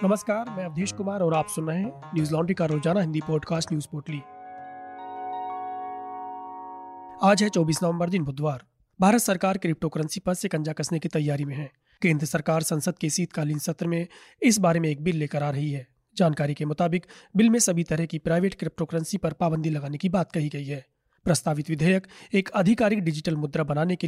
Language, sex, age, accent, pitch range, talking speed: Hindi, male, 30-49, native, 155-185 Hz, 190 wpm